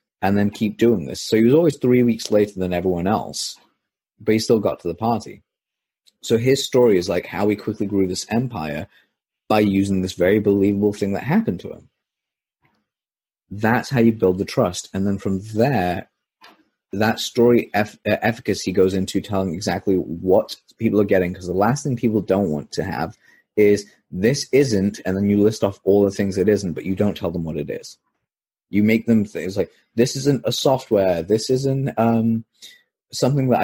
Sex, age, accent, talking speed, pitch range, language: male, 30-49, British, 195 wpm, 95-115 Hz, English